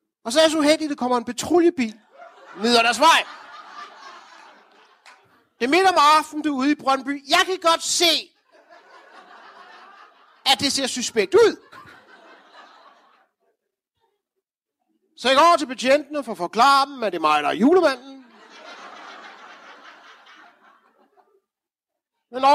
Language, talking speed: Danish, 130 wpm